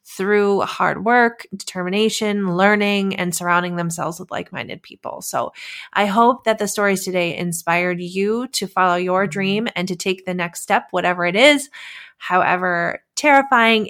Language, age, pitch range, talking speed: English, 20-39, 175-205 Hz, 150 wpm